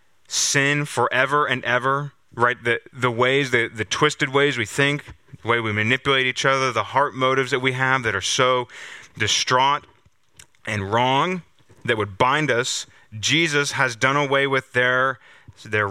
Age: 30-49